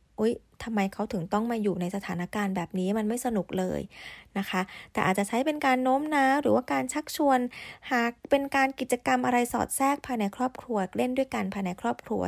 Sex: female